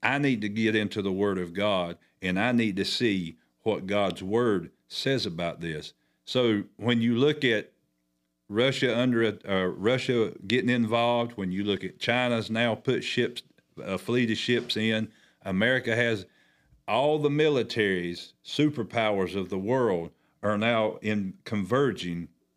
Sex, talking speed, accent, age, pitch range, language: male, 155 wpm, American, 50-69, 95-120 Hz, English